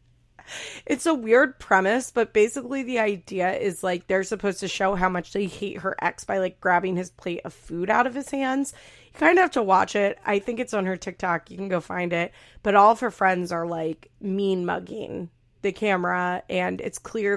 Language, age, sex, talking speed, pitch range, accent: English, 30-49, female, 215 wpm, 180-215 Hz, American